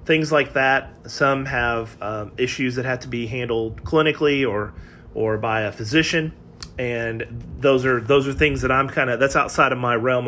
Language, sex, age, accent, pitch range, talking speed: English, male, 30-49, American, 115-150 Hz, 185 wpm